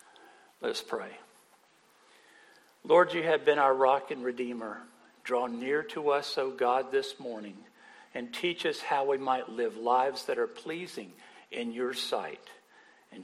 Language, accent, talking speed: English, American, 155 wpm